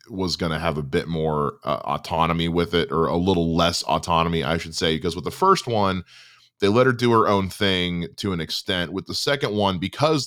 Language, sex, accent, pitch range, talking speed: English, male, American, 80-110 Hz, 230 wpm